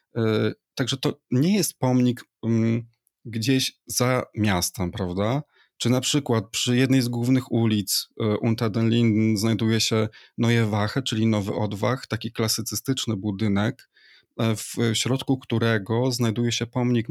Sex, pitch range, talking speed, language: male, 110-130 Hz, 120 wpm, Polish